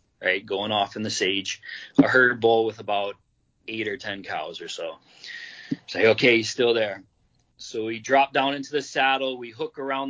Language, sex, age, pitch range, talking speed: English, male, 30-49, 110-130 Hz, 185 wpm